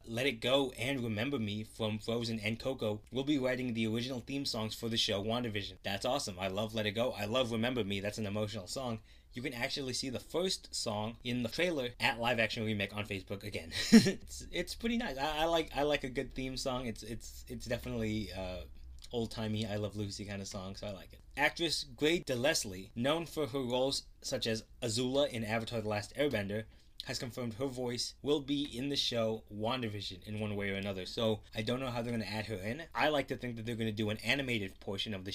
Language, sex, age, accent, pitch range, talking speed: English, male, 20-39, American, 105-125 Hz, 235 wpm